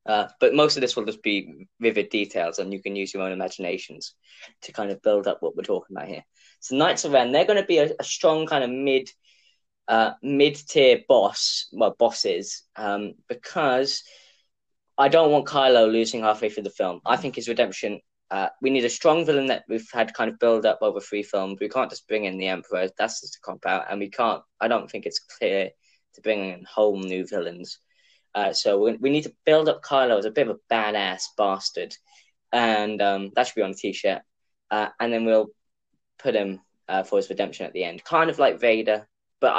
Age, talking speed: 10-29, 220 wpm